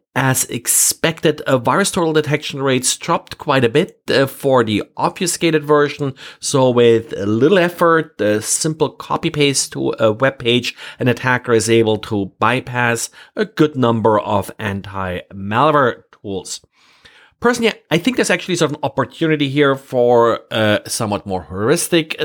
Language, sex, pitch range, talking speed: English, male, 115-150 Hz, 145 wpm